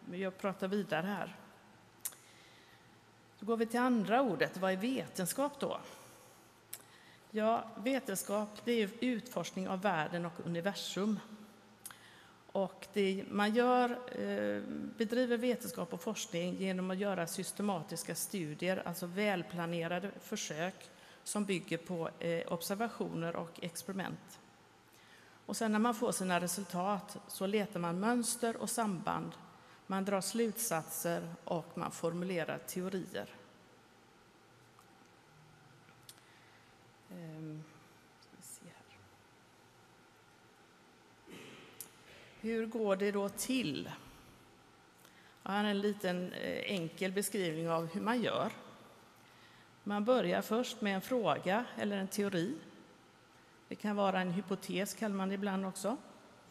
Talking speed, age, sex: 105 wpm, 50-69, female